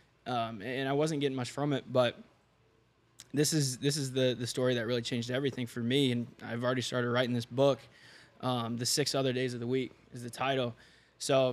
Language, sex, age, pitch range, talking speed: English, male, 20-39, 125-140 Hz, 215 wpm